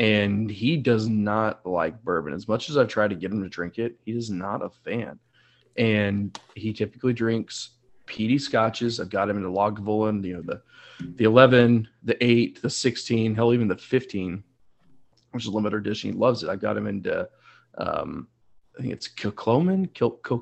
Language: English